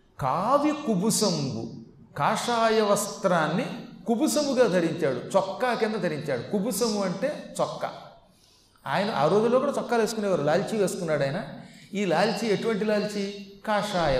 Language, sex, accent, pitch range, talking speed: Telugu, male, native, 150-220 Hz, 105 wpm